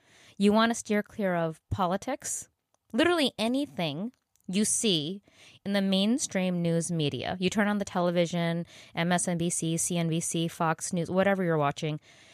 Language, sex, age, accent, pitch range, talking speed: English, female, 20-39, American, 155-200 Hz, 135 wpm